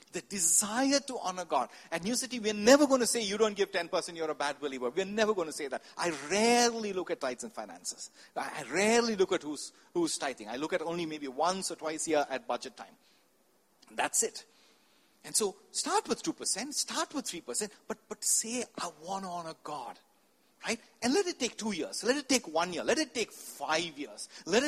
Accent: Indian